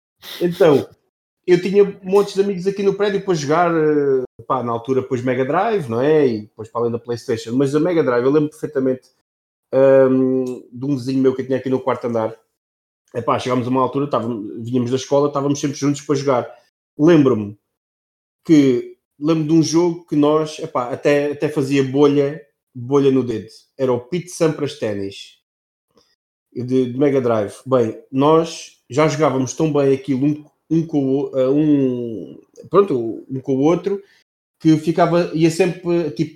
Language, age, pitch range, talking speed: Portuguese, 30-49, 130-160 Hz, 175 wpm